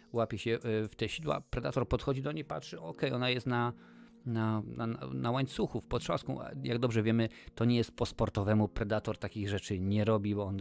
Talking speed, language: 205 wpm, Polish